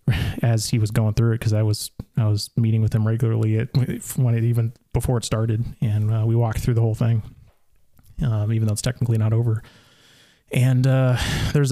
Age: 30-49